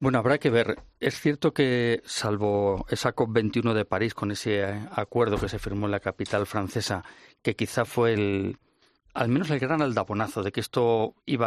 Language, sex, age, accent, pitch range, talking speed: Spanish, male, 40-59, Spanish, 100-130 Hz, 190 wpm